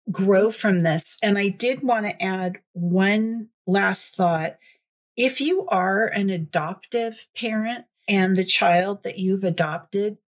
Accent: American